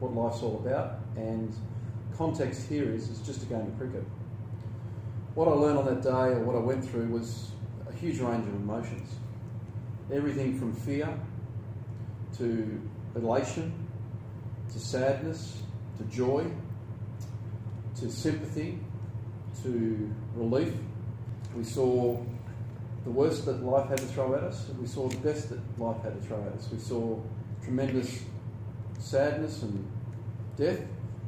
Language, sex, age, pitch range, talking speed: English, male, 40-59, 110-120 Hz, 140 wpm